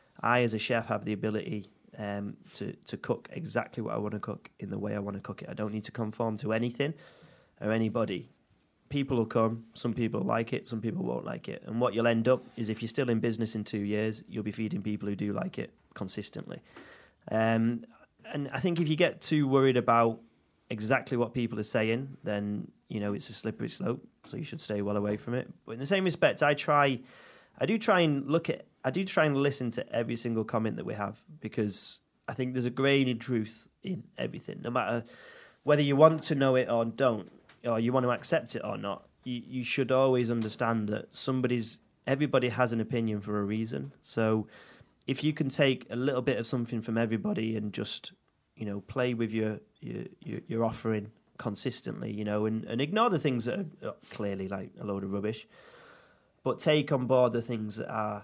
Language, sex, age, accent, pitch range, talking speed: English, male, 30-49, British, 110-130 Hz, 220 wpm